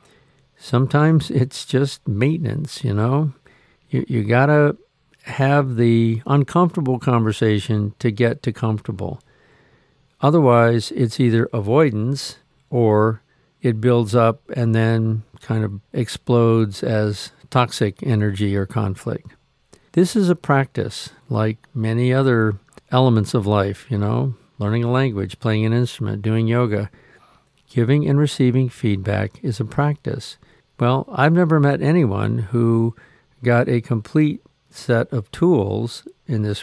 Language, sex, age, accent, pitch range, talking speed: English, male, 50-69, American, 115-140 Hz, 125 wpm